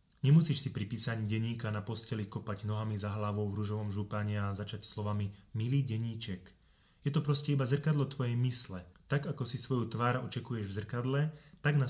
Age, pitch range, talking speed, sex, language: 20-39, 110-135 Hz, 180 wpm, male, Slovak